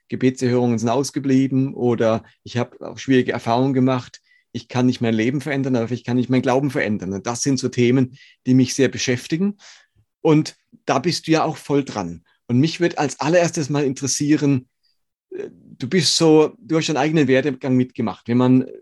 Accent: German